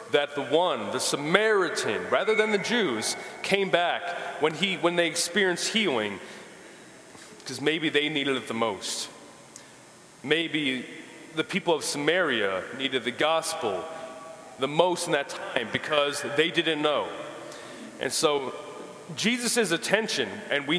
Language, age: English, 30-49